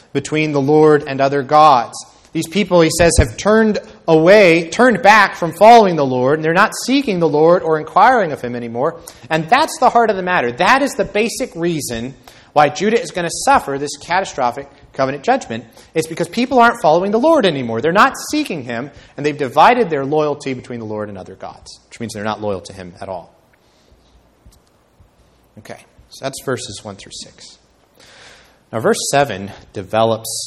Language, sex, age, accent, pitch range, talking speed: English, male, 30-49, American, 105-165 Hz, 185 wpm